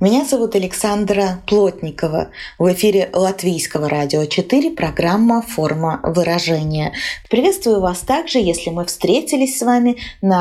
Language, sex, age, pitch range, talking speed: Russian, female, 20-39, 185-230 Hz, 120 wpm